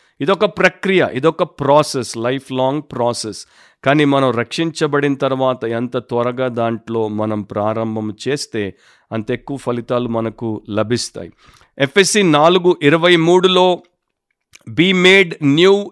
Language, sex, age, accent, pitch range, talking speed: Telugu, male, 50-69, native, 130-180 Hz, 110 wpm